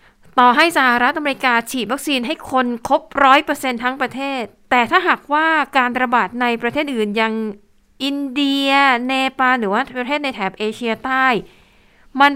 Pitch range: 220-275 Hz